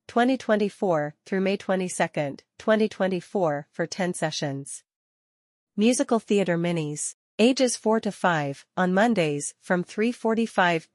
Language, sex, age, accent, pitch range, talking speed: English, female, 40-59, American, 165-210 Hz, 105 wpm